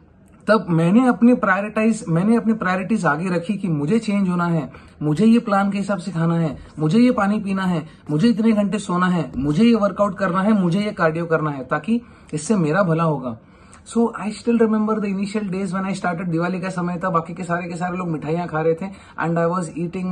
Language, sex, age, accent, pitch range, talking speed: English, male, 30-49, Indian, 165-215 Hz, 50 wpm